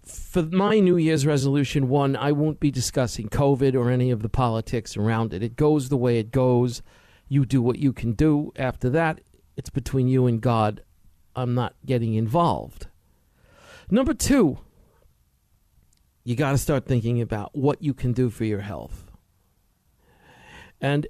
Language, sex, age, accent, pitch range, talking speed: English, male, 50-69, American, 110-155 Hz, 160 wpm